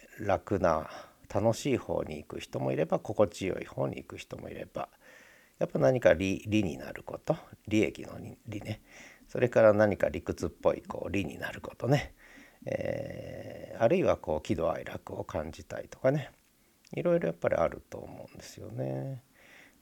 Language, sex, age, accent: Japanese, male, 50-69, native